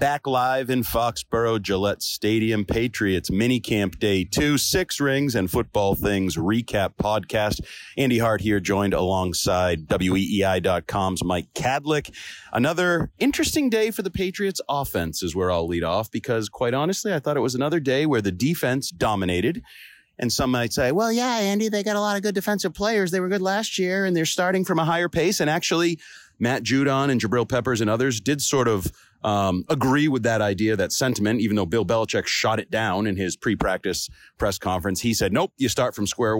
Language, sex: English, male